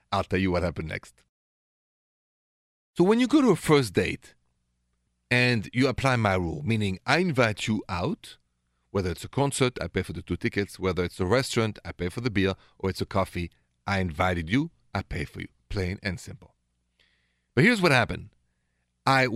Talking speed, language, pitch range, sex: 190 wpm, English, 90-145 Hz, male